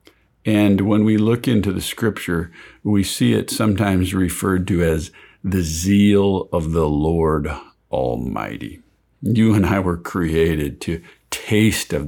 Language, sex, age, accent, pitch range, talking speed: English, male, 50-69, American, 85-100 Hz, 140 wpm